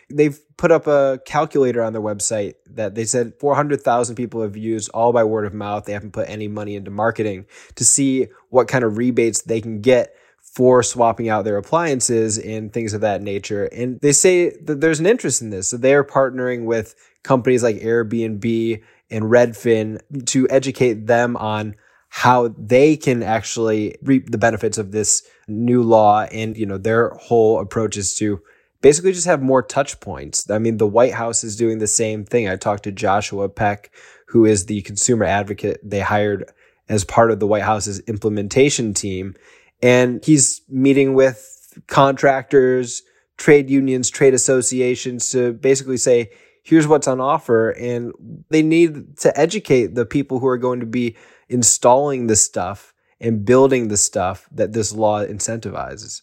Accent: American